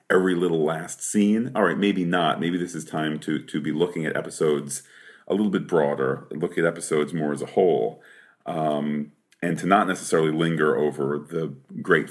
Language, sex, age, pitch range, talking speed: English, male, 40-59, 75-90 Hz, 190 wpm